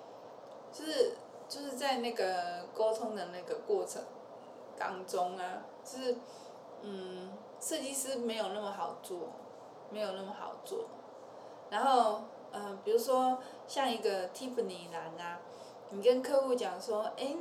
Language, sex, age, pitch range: Chinese, female, 20-39, 200-280 Hz